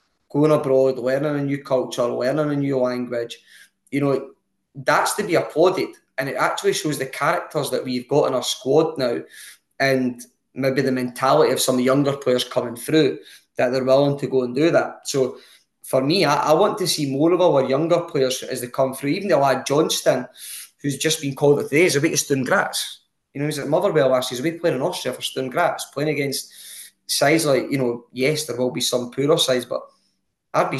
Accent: British